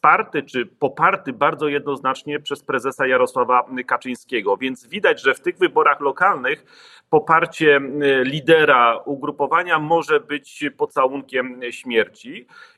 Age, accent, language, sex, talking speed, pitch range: 40-59, native, Polish, male, 105 wpm, 145-190 Hz